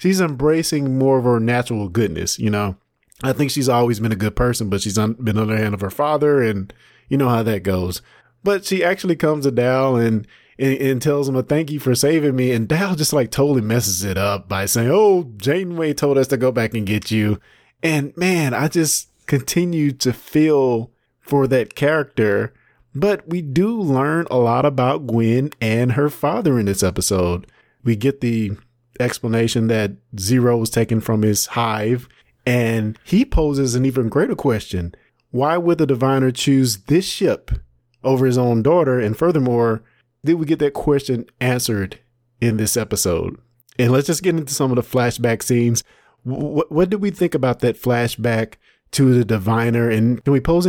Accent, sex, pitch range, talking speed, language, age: American, male, 115-145 Hz, 190 wpm, English, 20-39